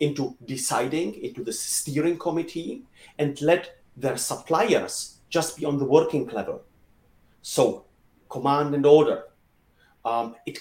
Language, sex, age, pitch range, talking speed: English, male, 40-59, 130-160 Hz, 125 wpm